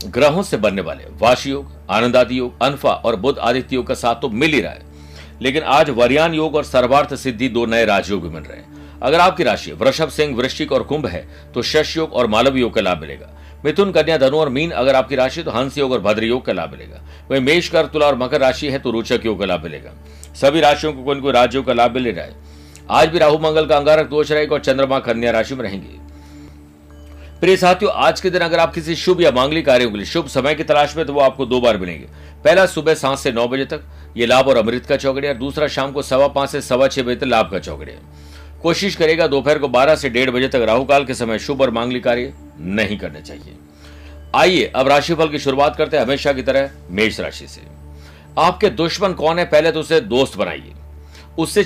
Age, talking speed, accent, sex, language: 60-79, 225 wpm, native, male, Hindi